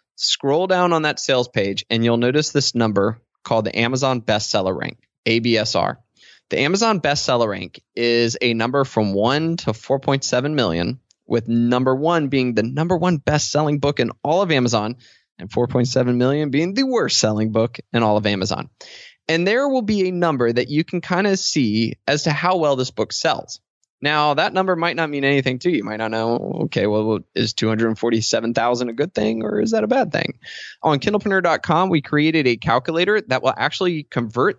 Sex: male